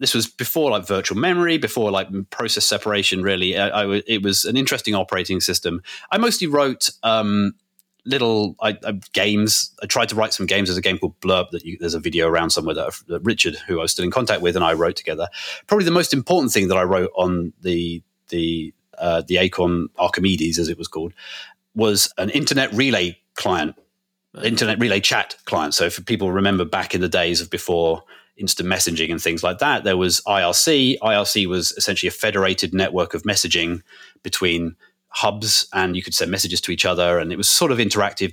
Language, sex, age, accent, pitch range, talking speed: English, male, 30-49, British, 90-115 Hz, 200 wpm